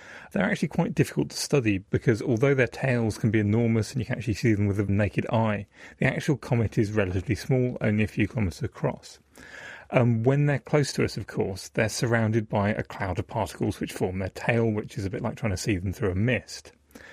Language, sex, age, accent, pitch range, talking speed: English, male, 30-49, British, 105-125 Hz, 225 wpm